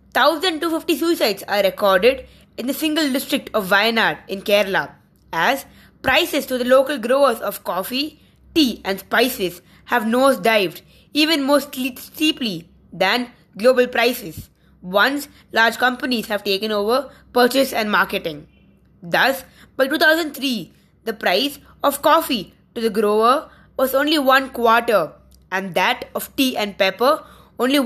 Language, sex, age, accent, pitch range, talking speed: English, female, 20-39, Indian, 215-280 Hz, 130 wpm